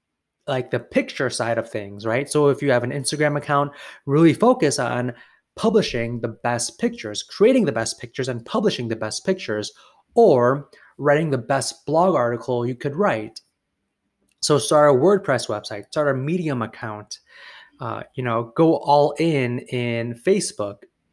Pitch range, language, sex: 120-185 Hz, English, male